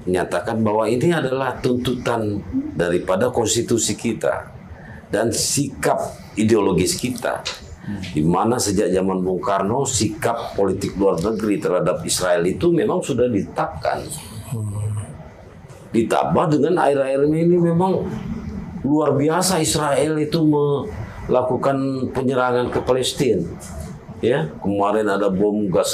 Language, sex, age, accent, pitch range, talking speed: Indonesian, male, 50-69, native, 105-145 Hz, 110 wpm